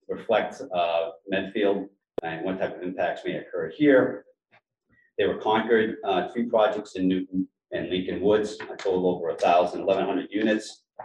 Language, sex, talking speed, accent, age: English, male, 145 wpm, American, 40-59